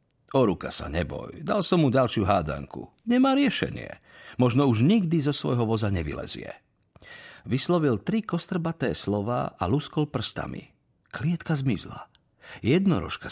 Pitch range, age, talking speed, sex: 100-135 Hz, 50-69, 125 wpm, male